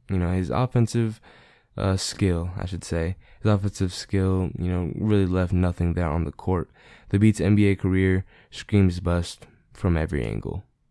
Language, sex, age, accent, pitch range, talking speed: English, male, 10-29, American, 90-105 Hz, 165 wpm